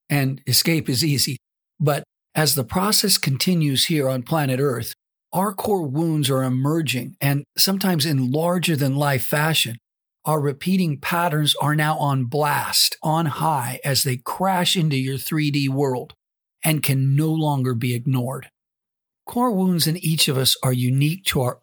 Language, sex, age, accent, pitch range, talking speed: English, male, 50-69, American, 130-160 Hz, 155 wpm